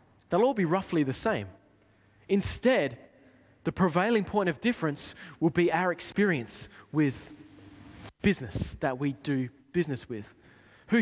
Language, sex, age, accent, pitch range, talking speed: English, male, 20-39, Australian, 125-180 Hz, 130 wpm